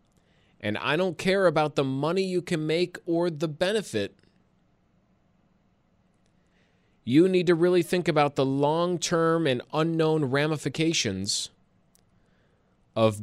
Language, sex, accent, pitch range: English, male, American, 145-210 Hz